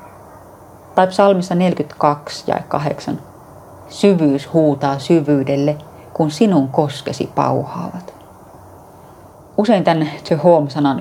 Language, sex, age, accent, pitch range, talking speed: Finnish, female, 30-49, native, 140-155 Hz, 85 wpm